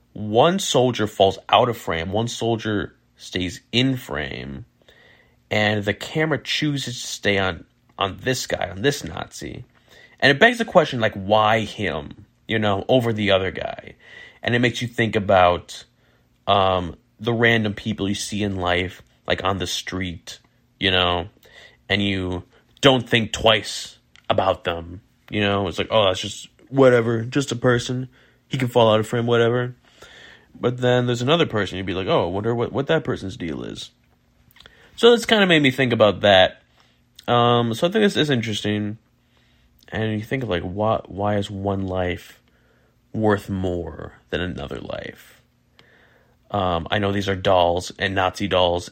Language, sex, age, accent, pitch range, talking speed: English, male, 30-49, American, 95-120 Hz, 170 wpm